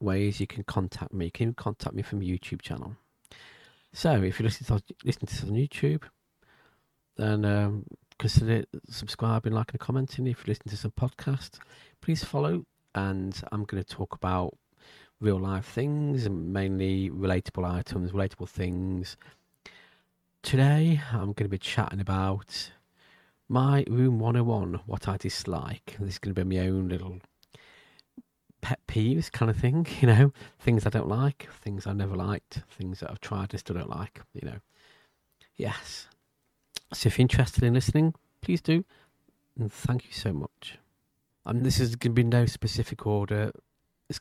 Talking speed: 165 wpm